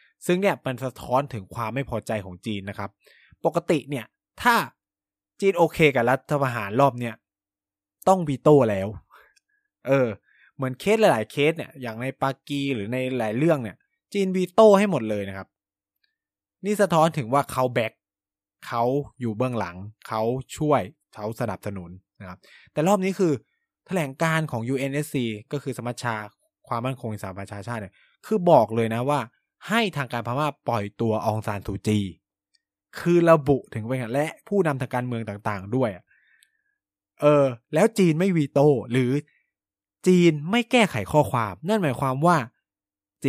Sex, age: male, 20-39